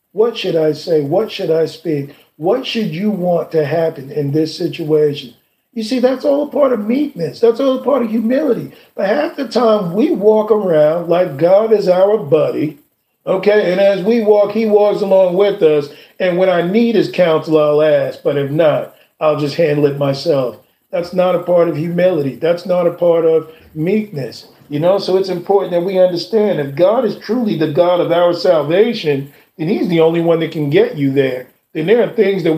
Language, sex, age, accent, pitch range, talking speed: English, male, 40-59, American, 155-200 Hz, 210 wpm